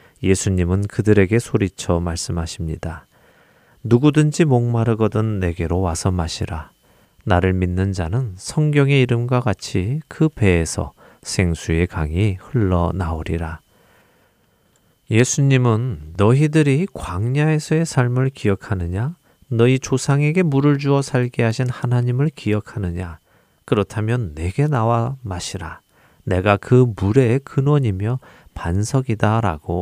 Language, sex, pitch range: Korean, male, 95-130 Hz